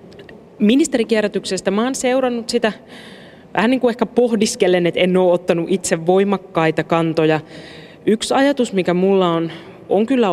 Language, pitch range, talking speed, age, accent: Finnish, 160-185 Hz, 135 wpm, 30-49, native